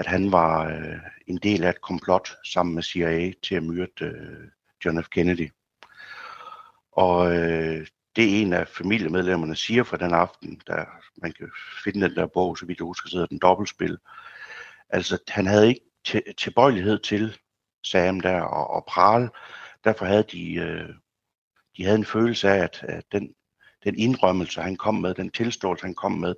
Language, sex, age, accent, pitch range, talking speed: Danish, male, 60-79, native, 85-105 Hz, 175 wpm